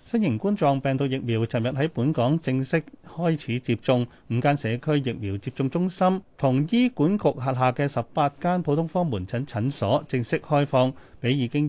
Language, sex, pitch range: Chinese, male, 115-155 Hz